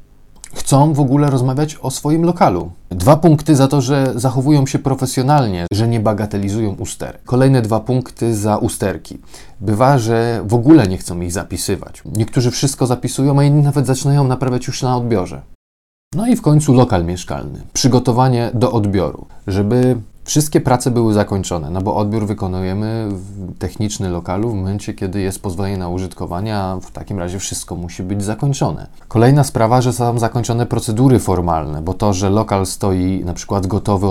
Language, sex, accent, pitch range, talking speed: Polish, male, native, 95-130 Hz, 165 wpm